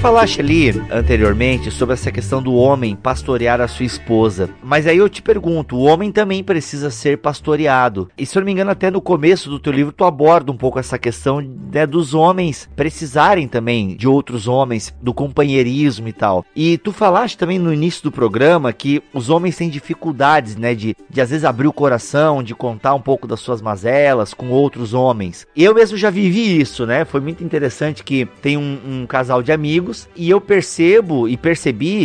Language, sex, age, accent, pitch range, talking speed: Portuguese, male, 30-49, Brazilian, 130-175 Hz, 200 wpm